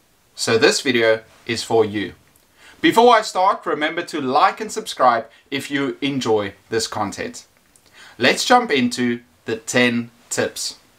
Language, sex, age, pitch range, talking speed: English, male, 30-49, 120-205 Hz, 135 wpm